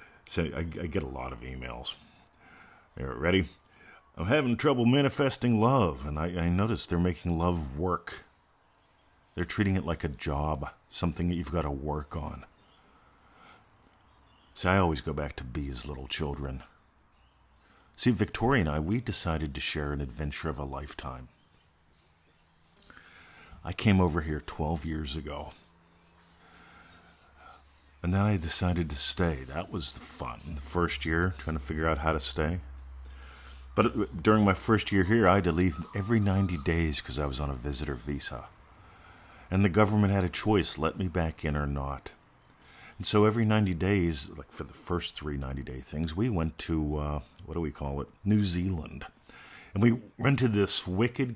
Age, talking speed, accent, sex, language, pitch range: 50-69, 170 wpm, American, male, English, 75-95 Hz